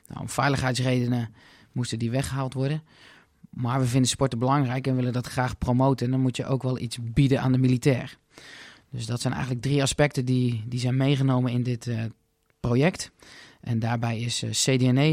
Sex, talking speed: male, 185 wpm